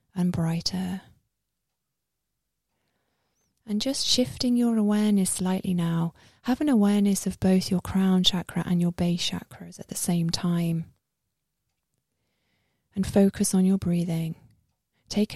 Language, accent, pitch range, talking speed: English, British, 175-200 Hz, 120 wpm